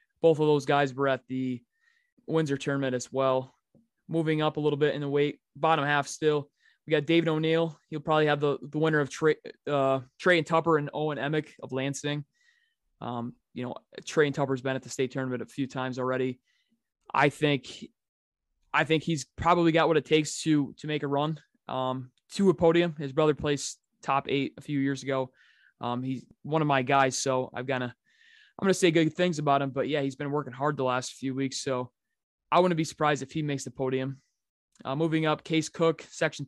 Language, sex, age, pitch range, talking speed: English, male, 20-39, 135-160 Hz, 215 wpm